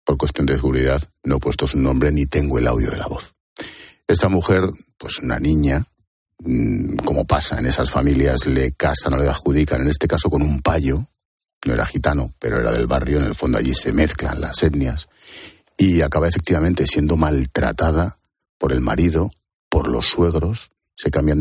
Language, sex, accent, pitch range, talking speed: Spanish, male, Spanish, 70-85 Hz, 180 wpm